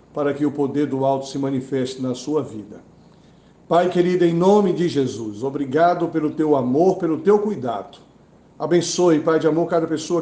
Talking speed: 175 wpm